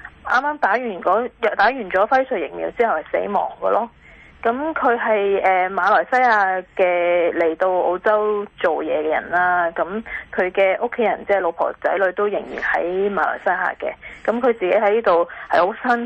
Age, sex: 20-39, female